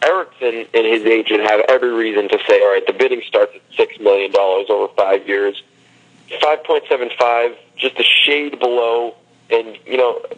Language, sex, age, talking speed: English, male, 30-49, 160 wpm